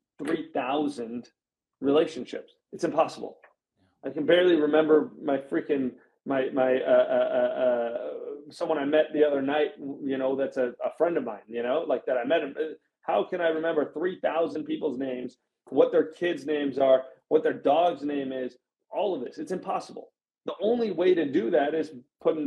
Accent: American